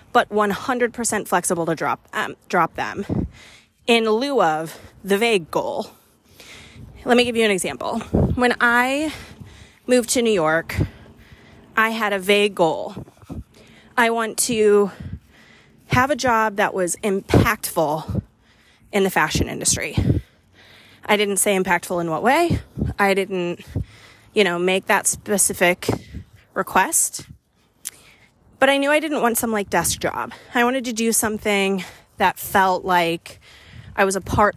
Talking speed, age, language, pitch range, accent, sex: 140 wpm, 30-49, English, 175-235 Hz, American, female